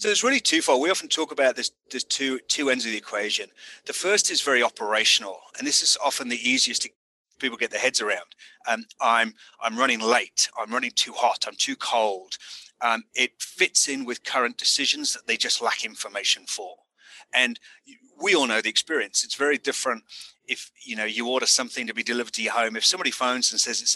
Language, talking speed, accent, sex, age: English, 215 wpm, British, male, 30-49